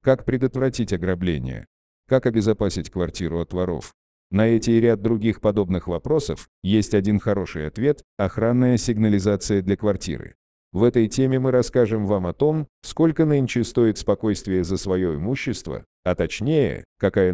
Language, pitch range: Russian, 95-125 Hz